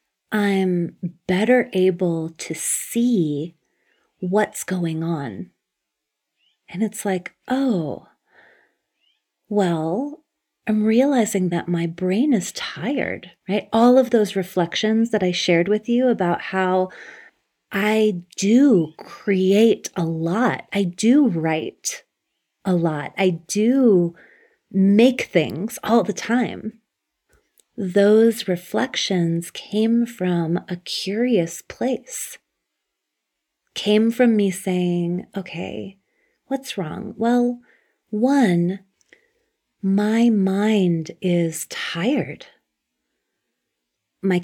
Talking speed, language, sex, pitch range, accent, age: 95 wpm, English, female, 175-225 Hz, American, 30-49